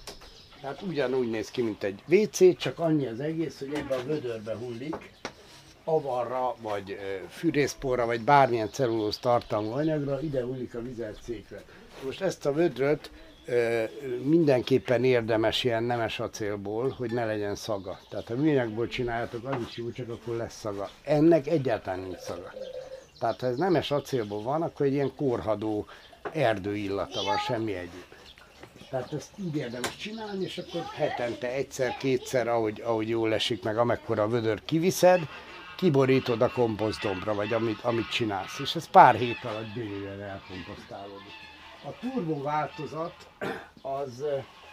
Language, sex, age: Hungarian, male, 60-79